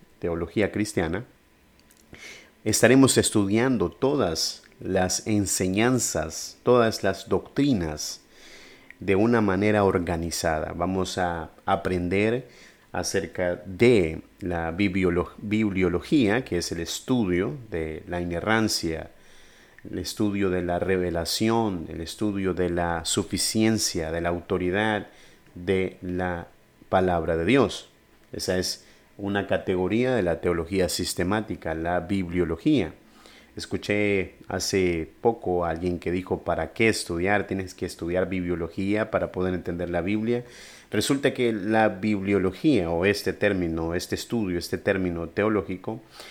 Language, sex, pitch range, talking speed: Spanish, male, 85-105 Hz, 115 wpm